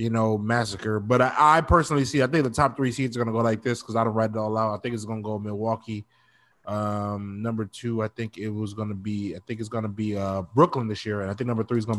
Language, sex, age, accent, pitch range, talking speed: English, male, 20-39, American, 110-130 Hz, 305 wpm